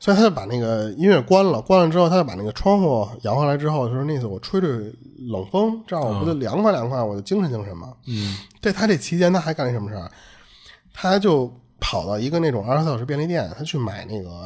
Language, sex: Chinese, male